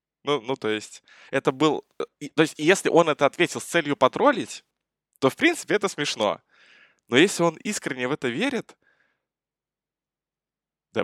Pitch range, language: 105-145 Hz, Russian